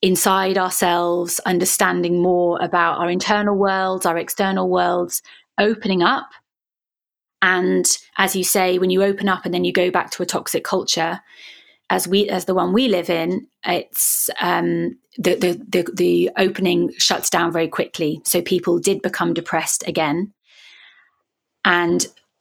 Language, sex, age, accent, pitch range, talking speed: English, female, 30-49, British, 180-210 Hz, 150 wpm